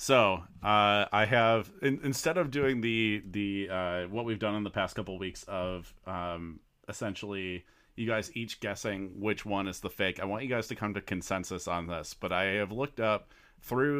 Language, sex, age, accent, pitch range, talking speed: English, male, 30-49, American, 95-120 Hz, 205 wpm